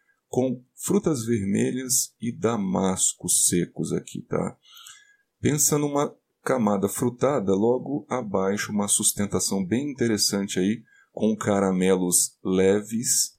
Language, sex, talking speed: Portuguese, male, 100 wpm